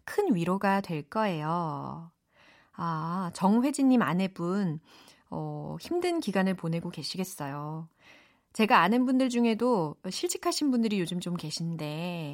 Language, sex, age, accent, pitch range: Korean, female, 30-49, native, 170-240 Hz